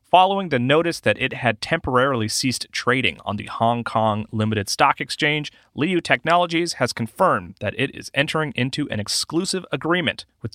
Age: 30-49